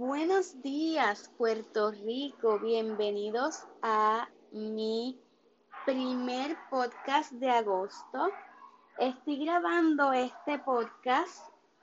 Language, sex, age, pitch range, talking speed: Spanish, female, 20-39, 225-285 Hz, 75 wpm